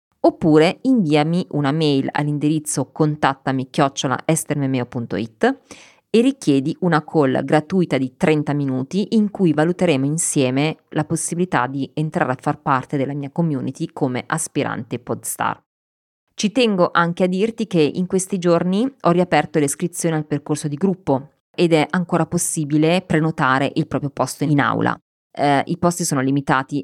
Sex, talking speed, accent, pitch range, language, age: female, 135 wpm, native, 140-170 Hz, Italian, 20-39